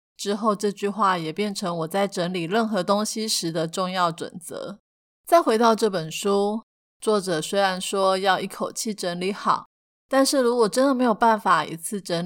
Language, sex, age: Chinese, female, 30-49